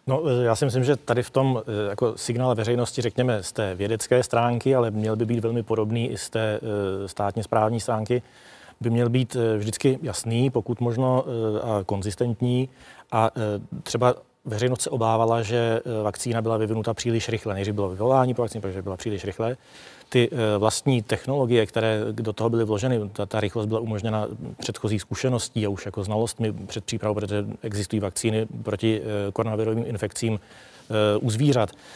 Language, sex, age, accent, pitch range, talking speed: Czech, male, 40-59, native, 110-125 Hz, 160 wpm